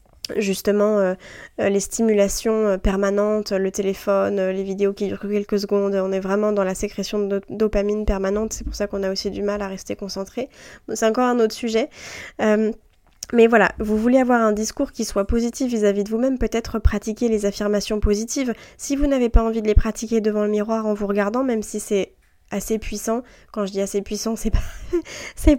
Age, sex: 20-39, female